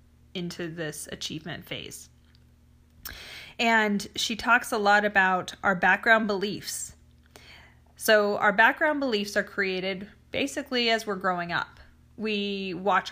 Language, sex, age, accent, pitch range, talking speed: English, female, 30-49, American, 175-205 Hz, 120 wpm